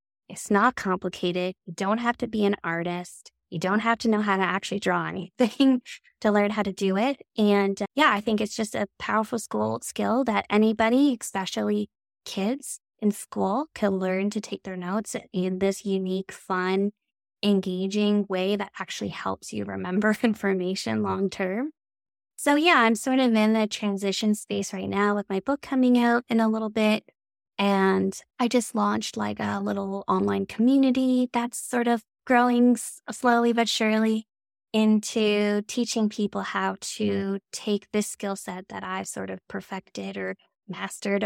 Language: English